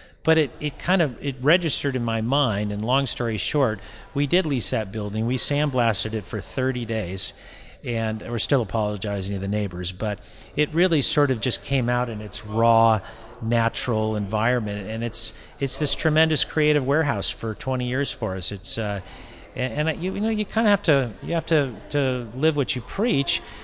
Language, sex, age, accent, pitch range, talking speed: English, male, 40-59, American, 110-145 Hz, 195 wpm